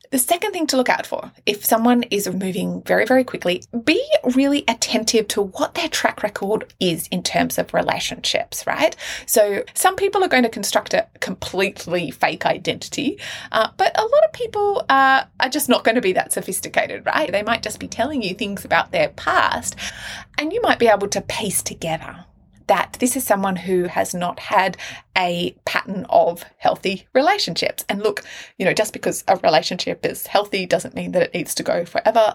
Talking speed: 195 wpm